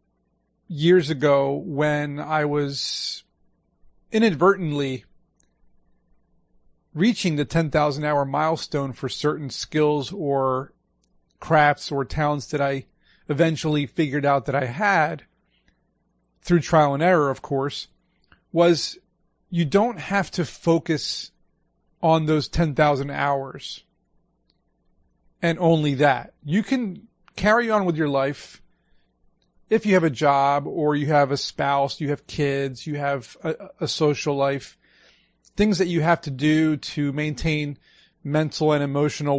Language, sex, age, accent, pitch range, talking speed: English, male, 40-59, American, 140-170 Hz, 125 wpm